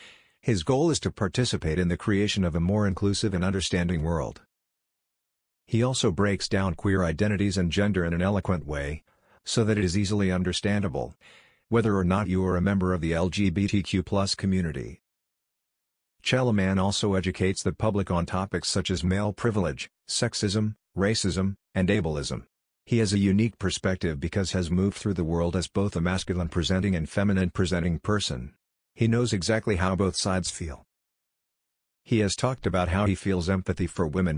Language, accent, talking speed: English, American, 170 wpm